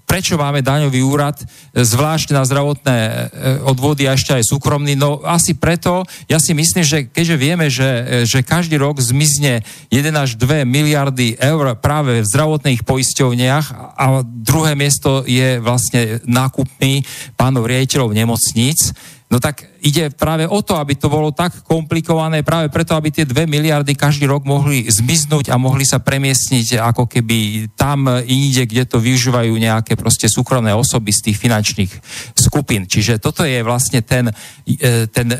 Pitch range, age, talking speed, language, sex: 125-150 Hz, 40-59, 155 wpm, Slovak, male